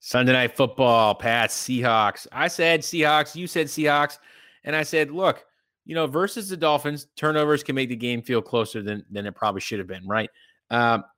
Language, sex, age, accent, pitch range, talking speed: English, male, 20-39, American, 110-130 Hz, 195 wpm